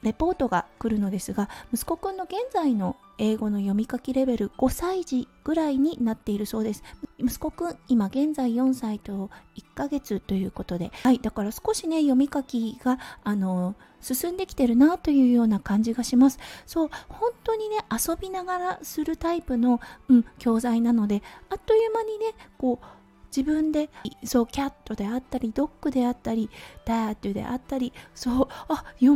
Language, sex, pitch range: Japanese, female, 225-315 Hz